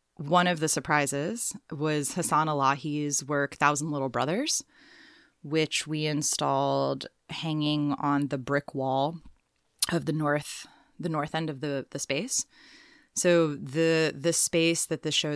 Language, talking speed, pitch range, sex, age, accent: English, 140 wpm, 145-170 Hz, female, 20-39, American